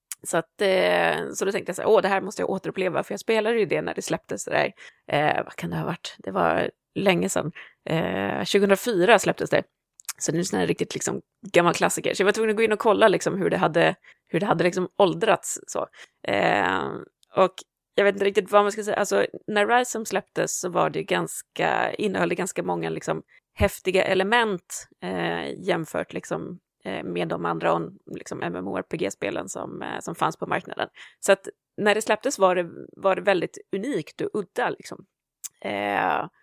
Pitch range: 170-205 Hz